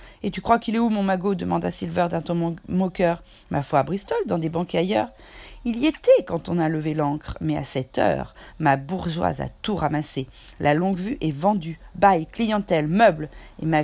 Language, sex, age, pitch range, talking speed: French, female, 40-59, 155-200 Hz, 215 wpm